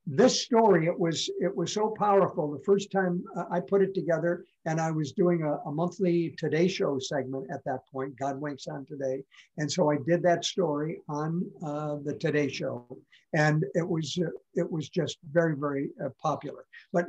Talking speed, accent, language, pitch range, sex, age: 195 wpm, American, English, 150-190 Hz, male, 60-79